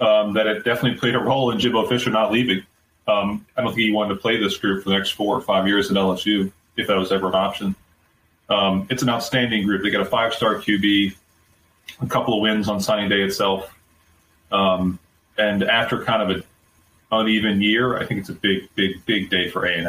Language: English